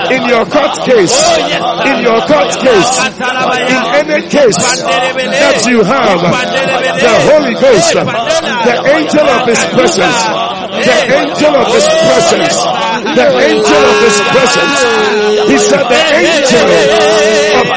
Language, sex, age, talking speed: English, male, 60-79, 125 wpm